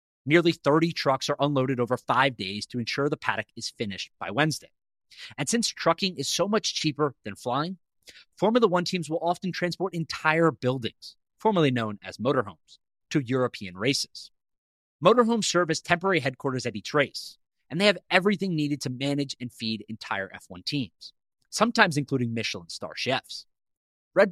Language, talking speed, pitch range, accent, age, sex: English, 165 wpm, 120-165 Hz, American, 30-49, male